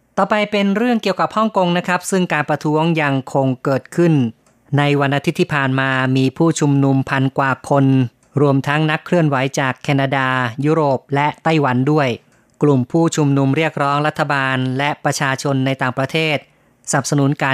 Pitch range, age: 135-160 Hz, 30-49